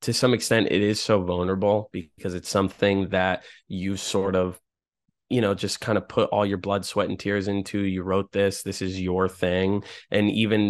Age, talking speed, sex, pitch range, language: 20-39, 200 wpm, male, 95-105 Hz, English